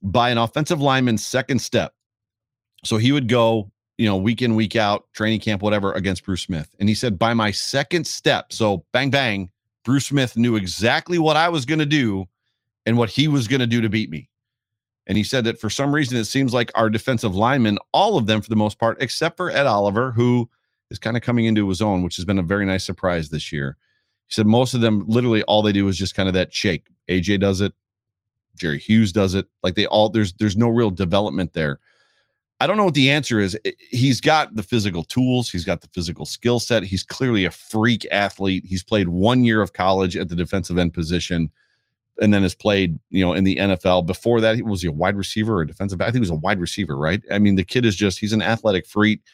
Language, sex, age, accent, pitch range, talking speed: English, male, 40-59, American, 95-120 Hz, 240 wpm